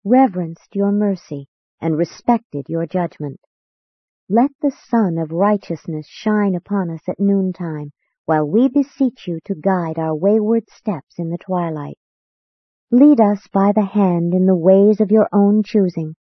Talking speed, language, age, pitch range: 150 wpm, English, 50-69, 165-220 Hz